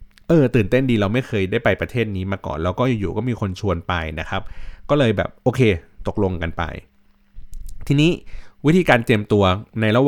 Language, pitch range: Thai, 95-120 Hz